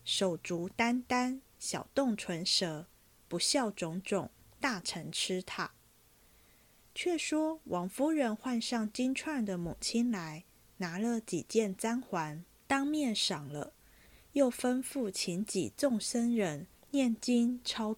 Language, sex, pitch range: Chinese, female, 175-240 Hz